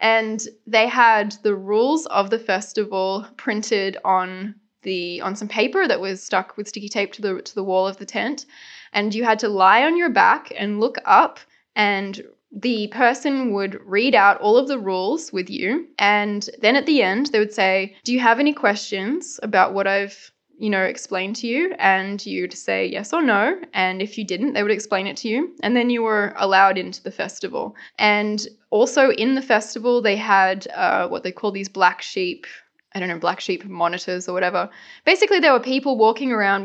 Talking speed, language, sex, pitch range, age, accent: 205 wpm, English, female, 195-245 Hz, 10-29, Australian